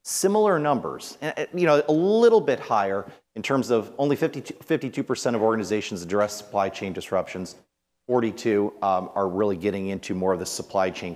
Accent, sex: American, male